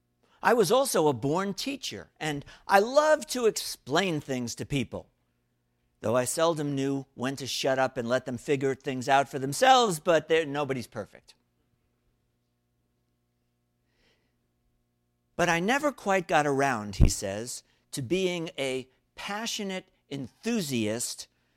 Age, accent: 50-69, American